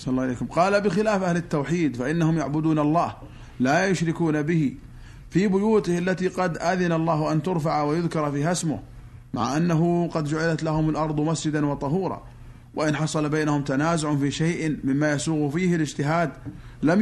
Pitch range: 145-175 Hz